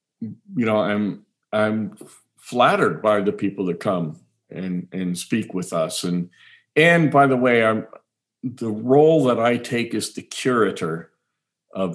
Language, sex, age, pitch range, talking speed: English, male, 50-69, 95-120 Hz, 150 wpm